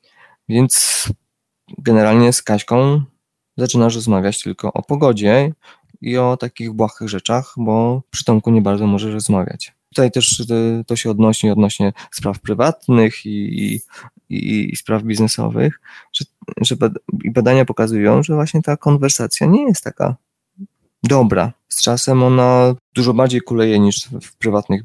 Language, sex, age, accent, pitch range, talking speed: Polish, male, 20-39, native, 105-125 Hz, 135 wpm